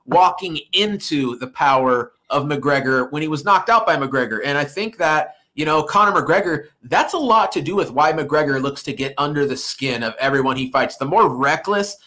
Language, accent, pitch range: English, American, 145-195 Hz